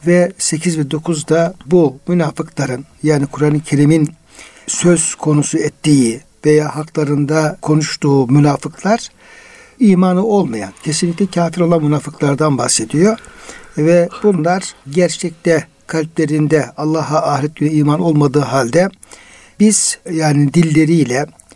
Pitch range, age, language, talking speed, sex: 145-175 Hz, 60-79, Turkish, 100 wpm, male